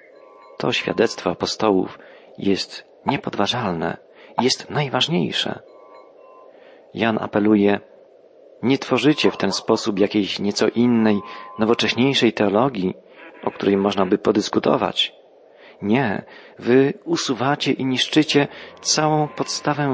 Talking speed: 95 wpm